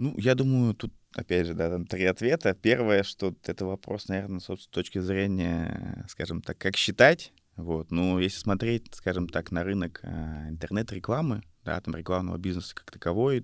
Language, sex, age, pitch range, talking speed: Russian, male, 20-39, 85-105 Hz, 165 wpm